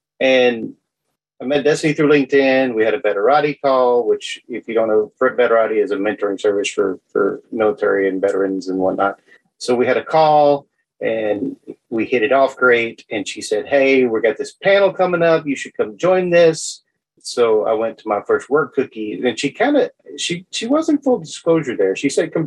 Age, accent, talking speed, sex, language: 30-49, American, 200 wpm, male, English